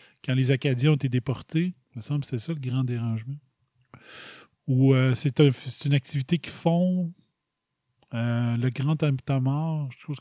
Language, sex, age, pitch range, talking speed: French, male, 30-49, 130-170 Hz, 170 wpm